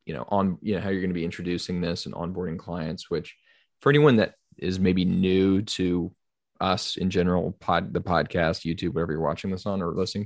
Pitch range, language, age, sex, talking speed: 85-100 Hz, English, 20-39, male, 215 wpm